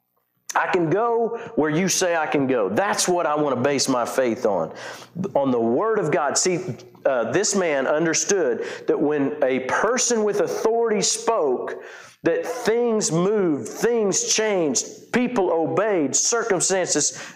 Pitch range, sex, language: 145-220 Hz, male, English